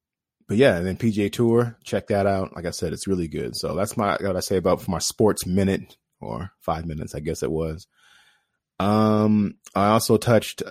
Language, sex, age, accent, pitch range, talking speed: English, male, 30-49, American, 90-110 Hz, 205 wpm